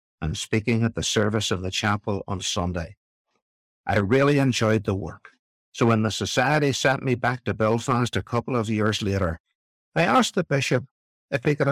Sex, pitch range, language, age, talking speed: male, 105-130 Hz, English, 60-79, 185 wpm